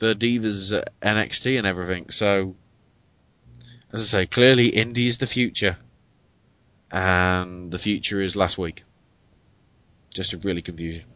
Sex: male